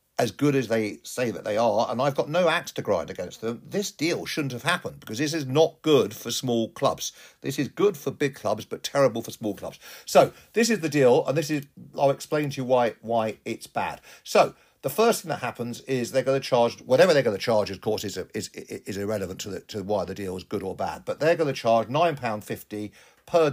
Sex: male